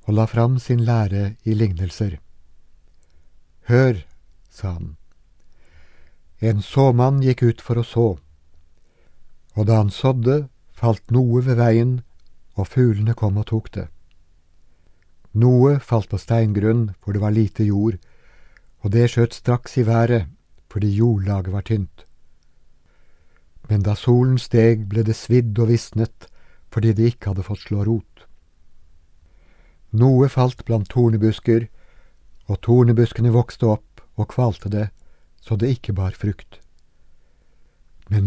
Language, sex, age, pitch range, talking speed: Danish, male, 60-79, 80-120 Hz, 140 wpm